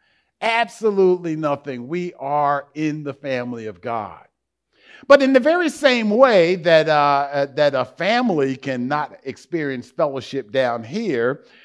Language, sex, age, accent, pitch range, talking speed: English, male, 50-69, American, 145-220 Hz, 130 wpm